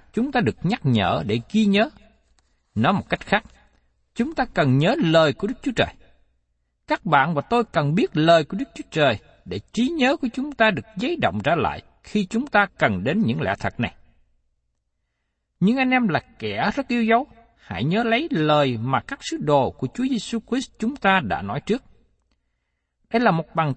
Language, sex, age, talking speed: Vietnamese, male, 60-79, 205 wpm